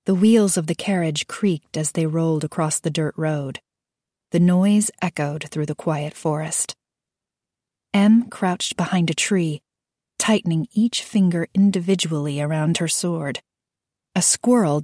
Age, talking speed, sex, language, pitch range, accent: 40-59, 140 wpm, female, English, 150-185 Hz, American